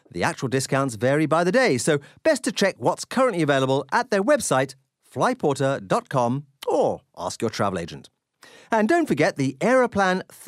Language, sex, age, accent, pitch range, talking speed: English, male, 40-59, British, 145-235 Hz, 160 wpm